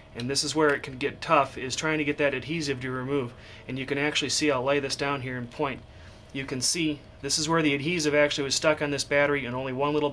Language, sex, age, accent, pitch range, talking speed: English, male, 30-49, American, 115-145 Hz, 275 wpm